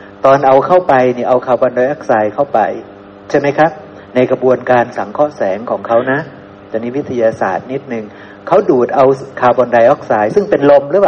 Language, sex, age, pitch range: Thai, male, 60-79, 115-145 Hz